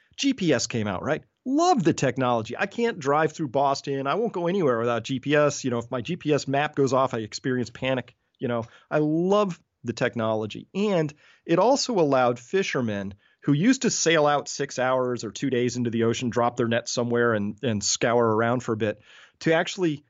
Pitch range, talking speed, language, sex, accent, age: 115-150 Hz, 195 wpm, English, male, American, 40-59